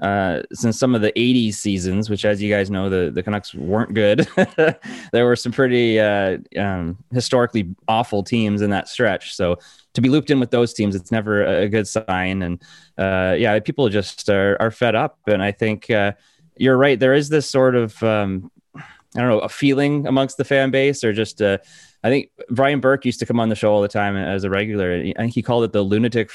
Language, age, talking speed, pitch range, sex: English, 20-39, 225 wpm, 100-120 Hz, male